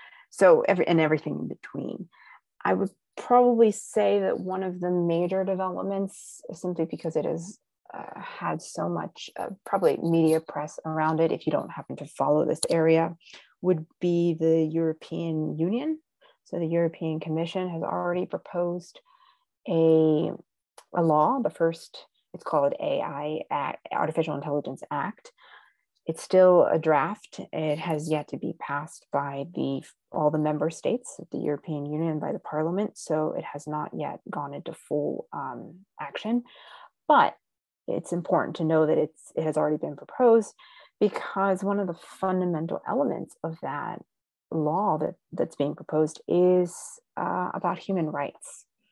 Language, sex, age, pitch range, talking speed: English, female, 30-49, 155-190 Hz, 155 wpm